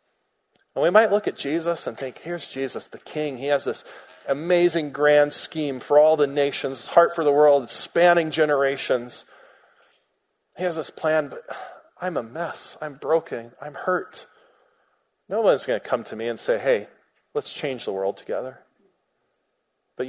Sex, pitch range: male, 135-175 Hz